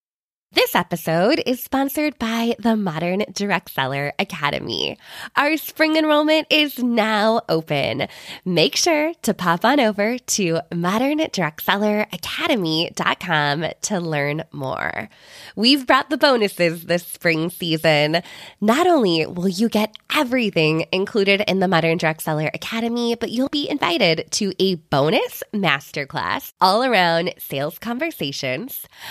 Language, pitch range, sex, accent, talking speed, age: English, 165-275 Hz, female, American, 120 wpm, 20-39